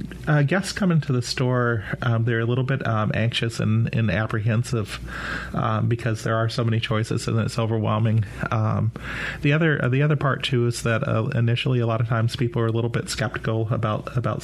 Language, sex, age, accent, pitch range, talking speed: English, male, 30-49, American, 110-125 Hz, 205 wpm